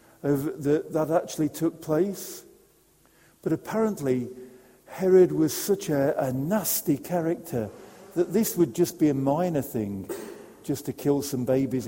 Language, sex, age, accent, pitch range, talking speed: English, male, 50-69, British, 130-185 Hz, 130 wpm